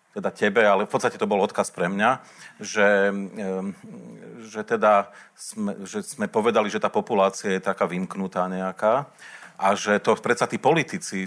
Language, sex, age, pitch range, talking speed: Slovak, male, 40-59, 100-140 Hz, 160 wpm